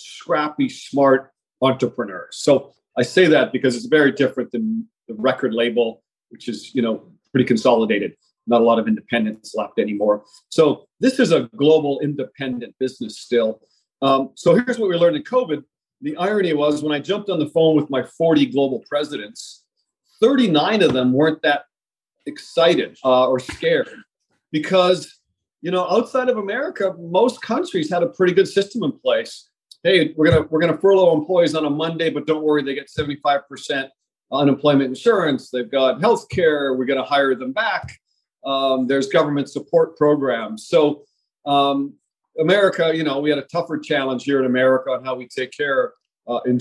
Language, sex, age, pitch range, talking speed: English, male, 40-59, 130-185 Hz, 170 wpm